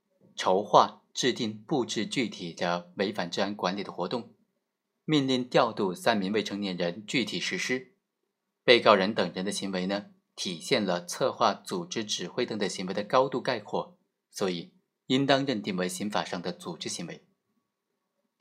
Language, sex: Chinese, male